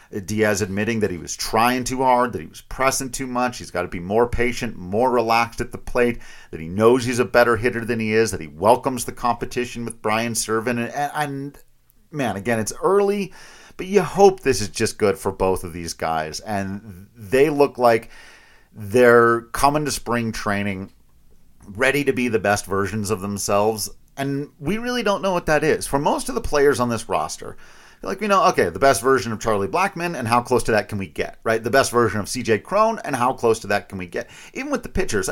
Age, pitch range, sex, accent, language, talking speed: 40-59, 105-135 Hz, male, American, English, 220 wpm